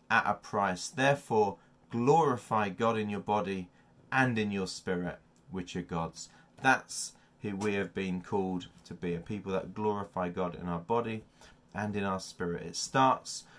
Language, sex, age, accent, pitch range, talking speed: English, male, 30-49, British, 95-125 Hz, 170 wpm